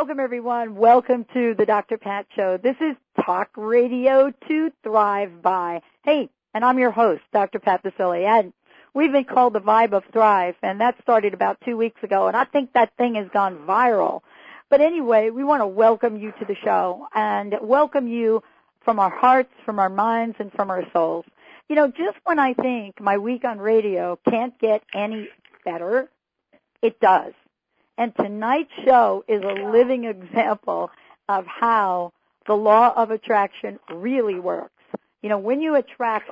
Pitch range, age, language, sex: 205-250 Hz, 50-69, English, female